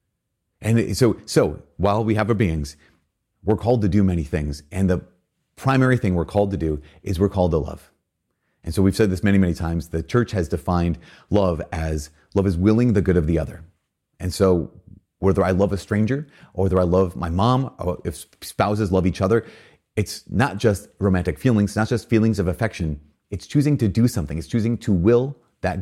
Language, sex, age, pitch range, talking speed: English, male, 30-49, 85-110 Hz, 205 wpm